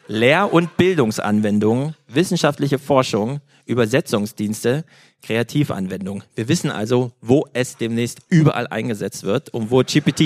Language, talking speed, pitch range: German, 110 wpm, 115-150 Hz